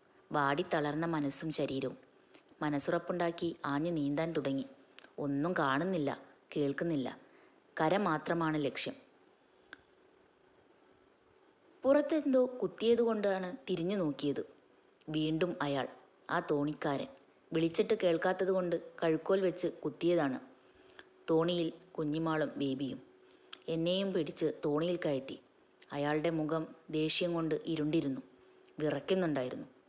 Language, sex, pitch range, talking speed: Malayalam, female, 155-195 Hz, 85 wpm